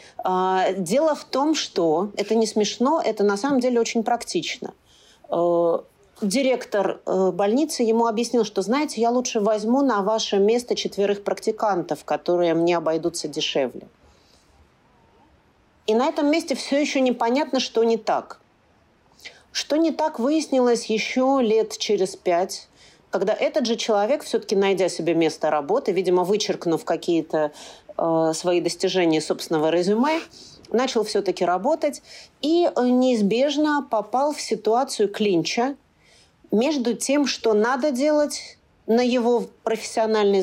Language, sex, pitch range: Russian, female, 190-265 Hz